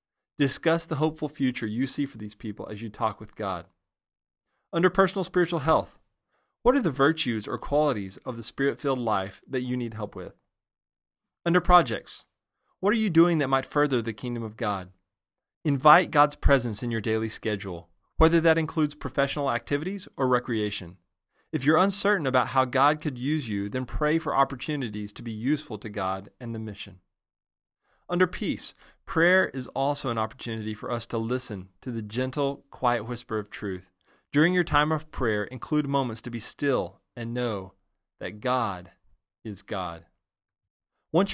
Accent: American